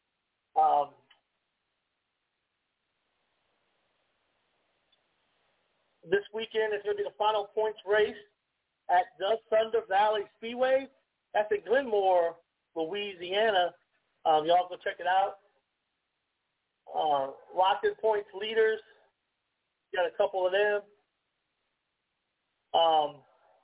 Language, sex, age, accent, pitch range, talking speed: English, male, 40-59, American, 195-235 Hz, 90 wpm